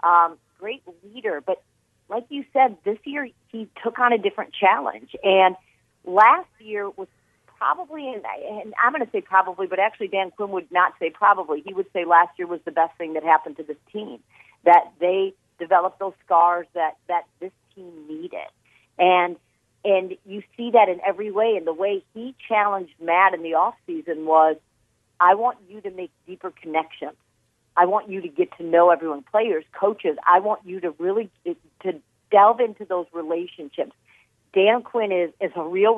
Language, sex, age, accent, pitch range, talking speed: English, female, 40-59, American, 175-210 Hz, 185 wpm